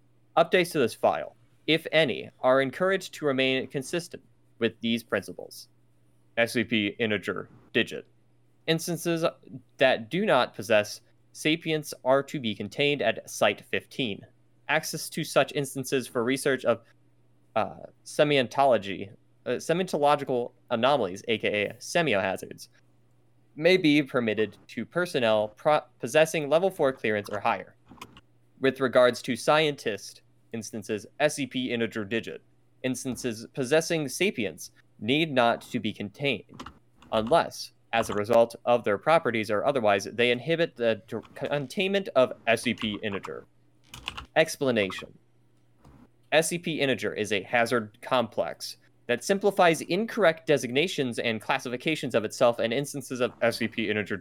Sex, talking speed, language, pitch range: male, 115 wpm, English, 110-150 Hz